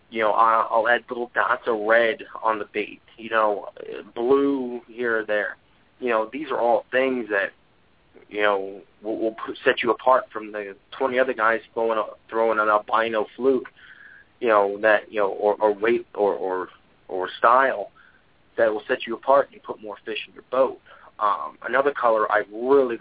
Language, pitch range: English, 105-120 Hz